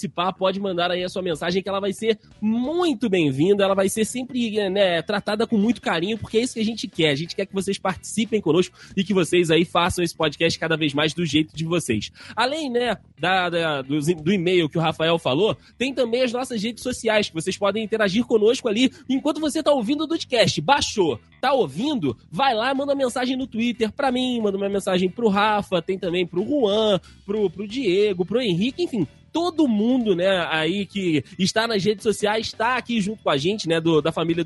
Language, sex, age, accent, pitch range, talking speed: Portuguese, male, 20-39, Brazilian, 175-230 Hz, 220 wpm